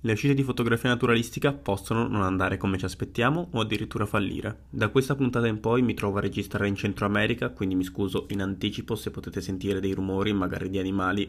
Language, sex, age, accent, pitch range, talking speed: Italian, male, 20-39, native, 100-120 Hz, 205 wpm